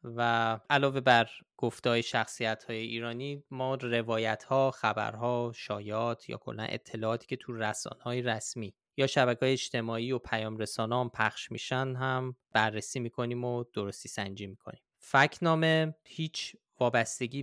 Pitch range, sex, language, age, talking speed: 115-130 Hz, male, Persian, 20-39, 120 wpm